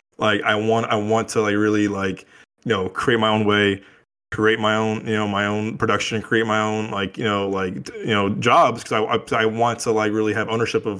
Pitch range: 105-120 Hz